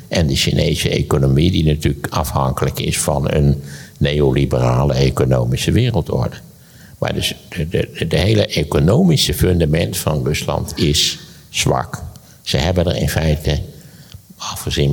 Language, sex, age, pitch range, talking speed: Dutch, male, 60-79, 70-90 Hz, 125 wpm